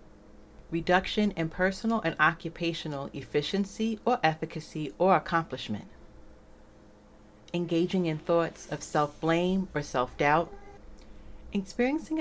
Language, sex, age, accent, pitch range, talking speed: English, female, 30-49, American, 105-175 Hz, 90 wpm